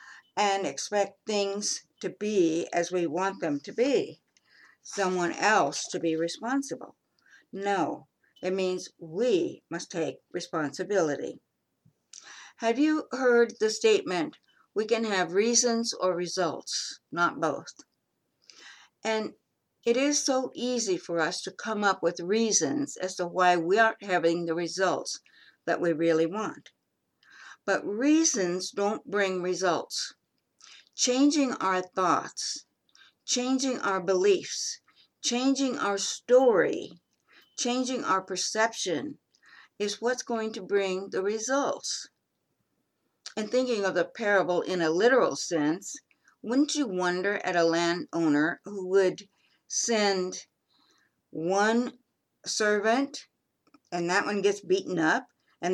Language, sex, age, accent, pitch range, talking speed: English, female, 60-79, American, 180-245 Hz, 120 wpm